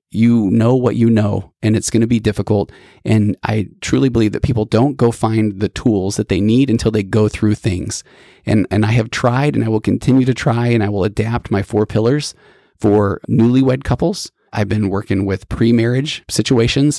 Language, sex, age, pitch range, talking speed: English, male, 30-49, 105-120 Hz, 200 wpm